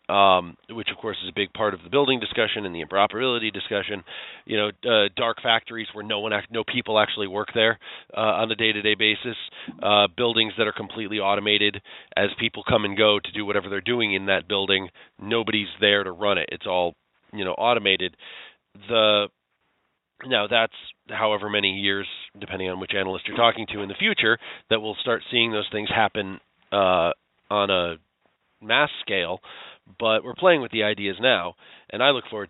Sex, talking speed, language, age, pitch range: male, 190 wpm, English, 30-49, 100-115 Hz